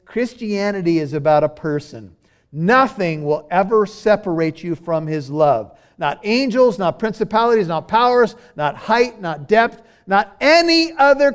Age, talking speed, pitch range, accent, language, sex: 50-69, 140 wpm, 150-220 Hz, American, English, male